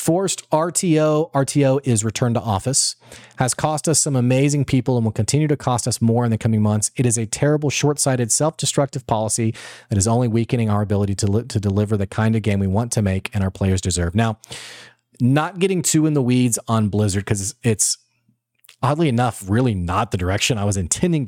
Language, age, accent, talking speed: English, 30-49, American, 205 wpm